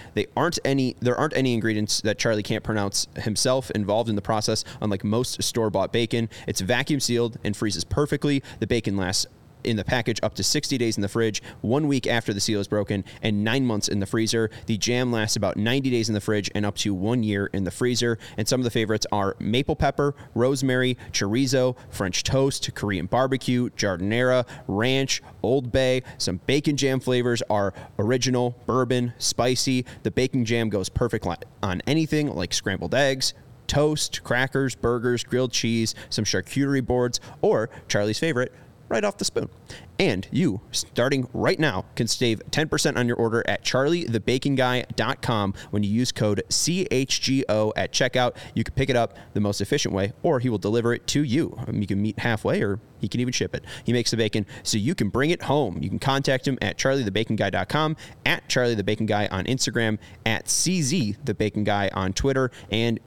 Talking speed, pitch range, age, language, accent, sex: 195 wpm, 105-130 Hz, 30-49, English, American, male